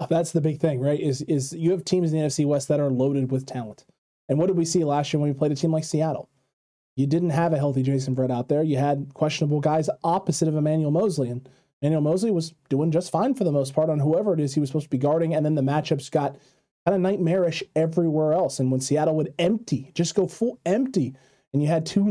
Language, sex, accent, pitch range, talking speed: English, male, American, 145-175 Hz, 255 wpm